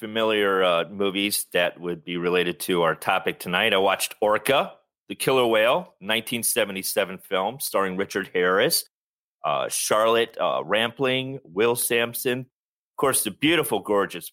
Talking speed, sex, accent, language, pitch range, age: 140 wpm, male, American, English, 105-130 Hz, 30-49